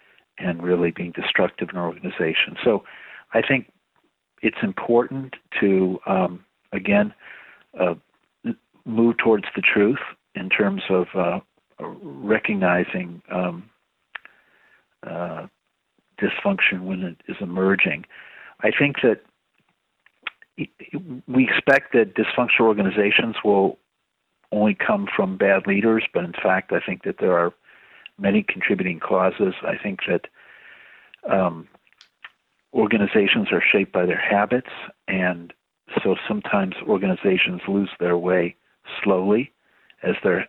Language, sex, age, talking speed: English, male, 60-79, 115 wpm